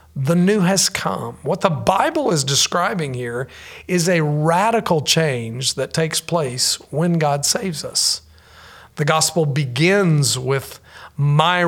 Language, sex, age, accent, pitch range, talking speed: English, male, 40-59, American, 135-170 Hz, 135 wpm